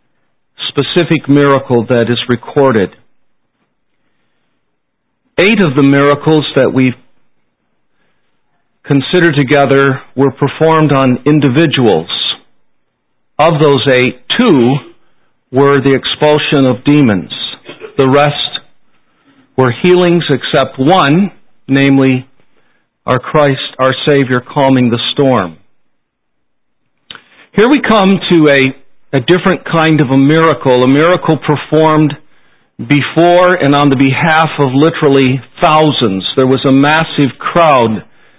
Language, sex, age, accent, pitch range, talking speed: English, male, 50-69, American, 130-150 Hz, 105 wpm